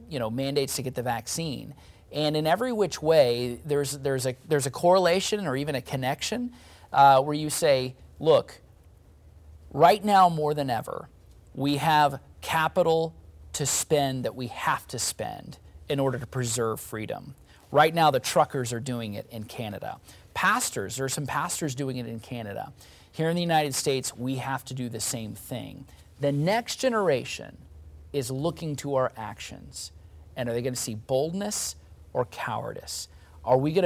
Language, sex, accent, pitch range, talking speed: English, male, American, 110-150 Hz, 170 wpm